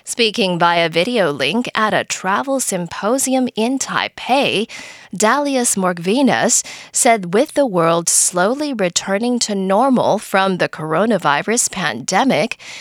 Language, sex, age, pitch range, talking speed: English, female, 20-39, 180-255 Hz, 115 wpm